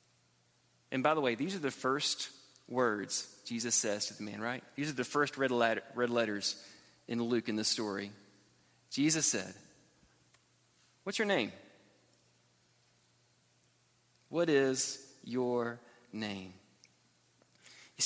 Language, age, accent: English, 30-49, American